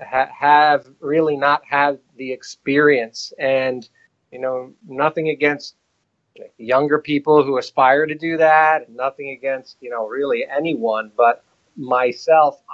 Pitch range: 125-165 Hz